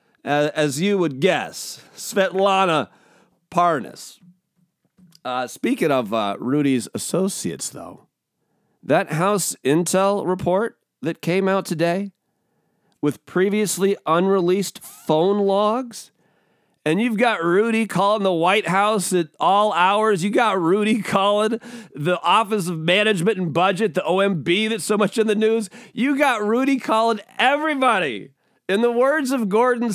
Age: 40-59